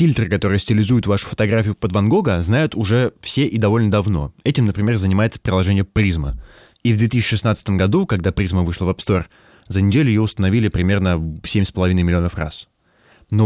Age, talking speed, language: 20-39, 170 wpm, Russian